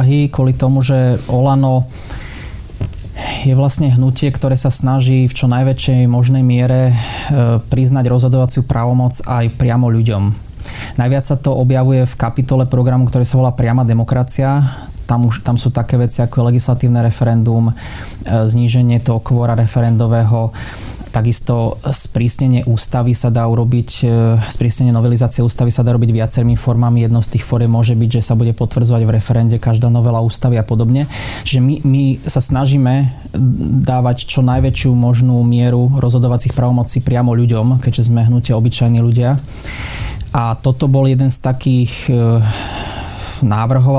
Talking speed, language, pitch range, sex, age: 140 wpm, Slovak, 115-130 Hz, male, 20-39